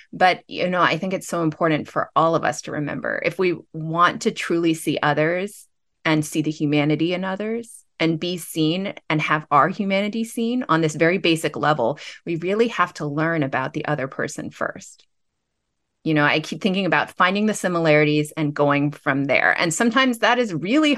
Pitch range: 150-170 Hz